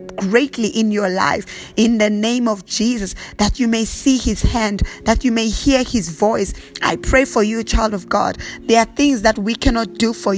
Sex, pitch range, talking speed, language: female, 210-245 Hz, 210 wpm, English